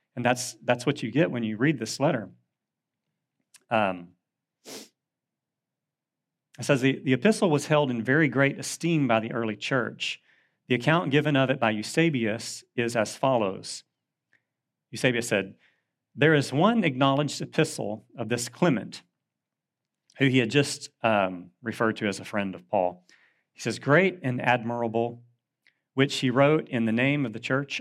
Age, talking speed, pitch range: 40-59, 160 wpm, 110-140 Hz